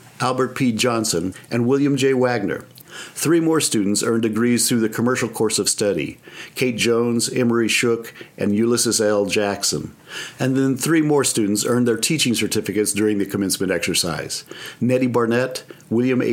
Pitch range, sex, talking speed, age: 105-125 Hz, male, 155 wpm, 50-69